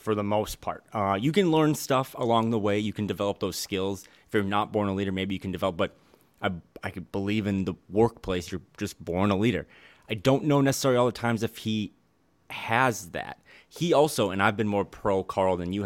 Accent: American